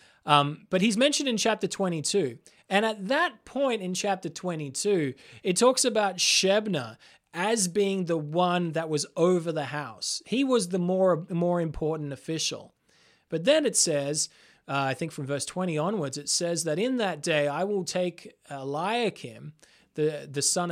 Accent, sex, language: Australian, male, English